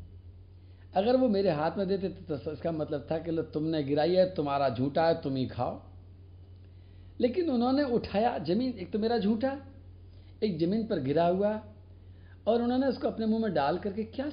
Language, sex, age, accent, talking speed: Hindi, male, 50-69, native, 175 wpm